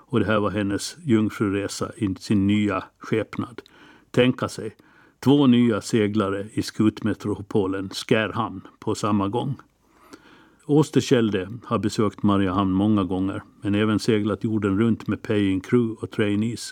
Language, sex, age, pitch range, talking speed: Swedish, male, 60-79, 100-115 Hz, 135 wpm